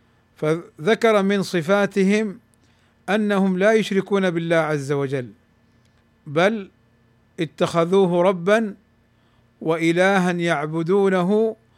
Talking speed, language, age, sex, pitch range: 70 wpm, Arabic, 50-69, male, 120-190 Hz